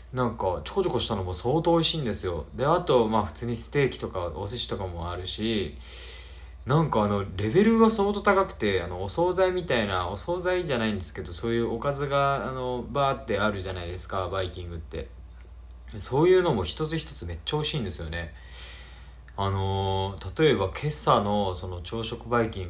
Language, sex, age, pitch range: Japanese, male, 20-39, 85-120 Hz